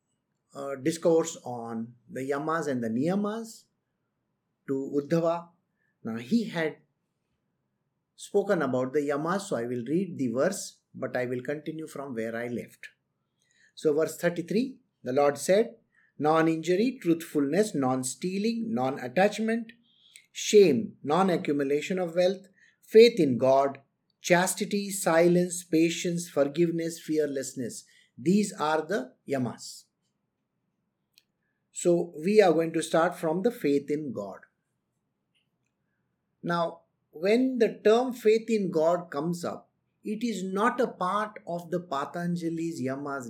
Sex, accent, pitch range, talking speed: male, Indian, 145-195 Hz, 120 wpm